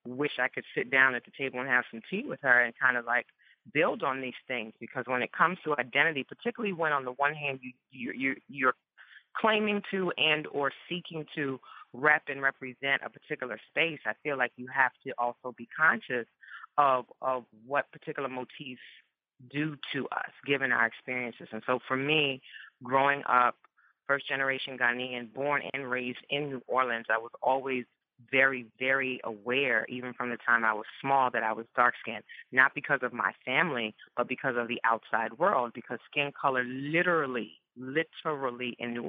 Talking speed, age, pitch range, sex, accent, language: 185 wpm, 30-49, 125-145 Hz, female, American, English